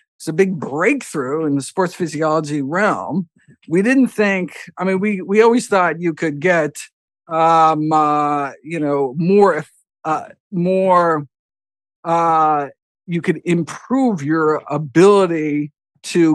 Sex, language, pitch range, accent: male, English, 145-180 Hz, American